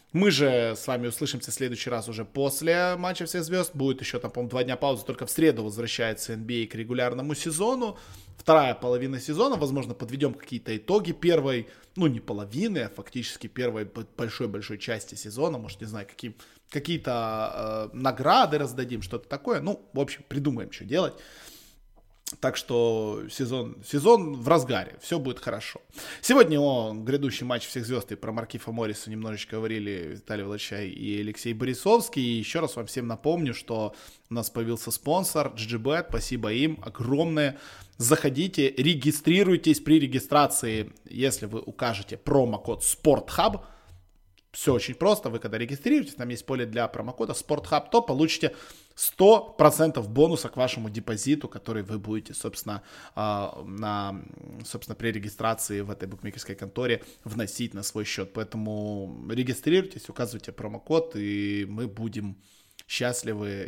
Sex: male